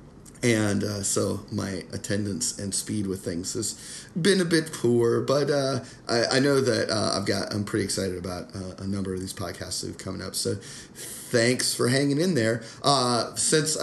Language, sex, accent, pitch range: English, male, American, 100-125 Hz